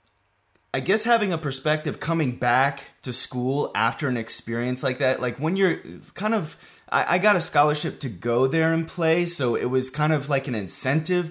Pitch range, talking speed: 115-155 Hz, 195 wpm